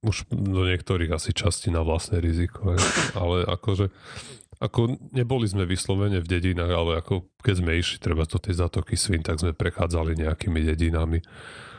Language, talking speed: Slovak, 165 wpm